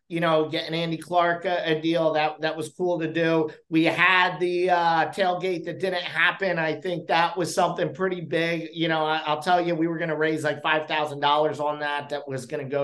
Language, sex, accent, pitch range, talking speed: English, male, American, 165-200 Hz, 225 wpm